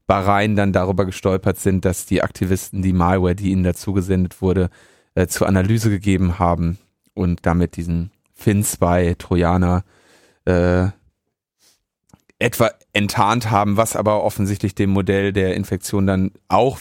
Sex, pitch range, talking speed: male, 95-115 Hz, 140 wpm